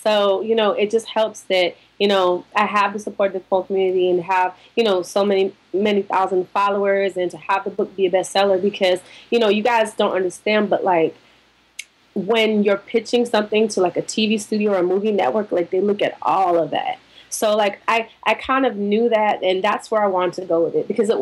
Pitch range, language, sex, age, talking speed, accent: 185-220 Hz, English, female, 20-39, 230 wpm, American